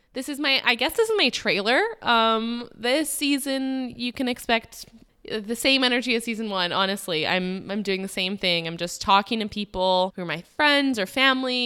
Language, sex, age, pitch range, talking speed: English, female, 20-39, 180-240 Hz, 200 wpm